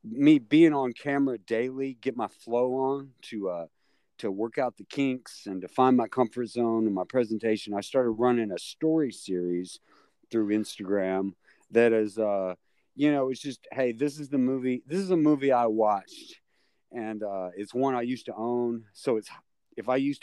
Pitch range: 105-130 Hz